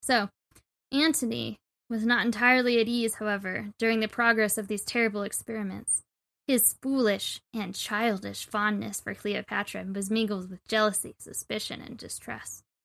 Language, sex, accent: English, female, American